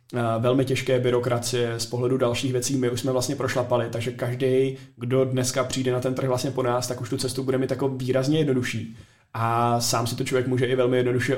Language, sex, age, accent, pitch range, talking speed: Czech, male, 20-39, native, 120-130 Hz, 215 wpm